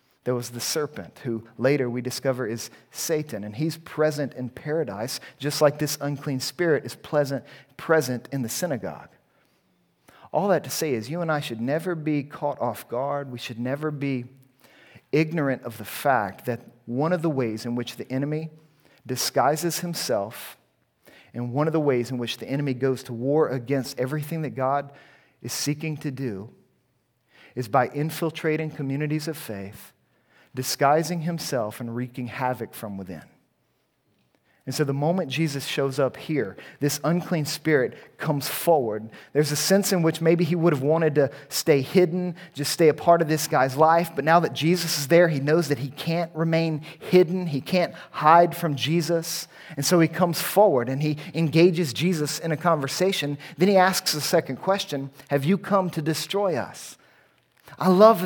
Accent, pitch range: American, 135-165 Hz